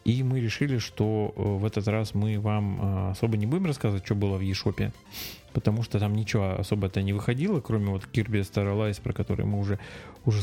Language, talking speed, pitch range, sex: Russian, 200 wpm, 100-115 Hz, male